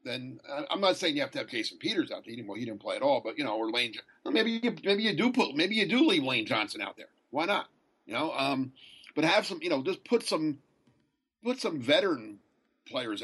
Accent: American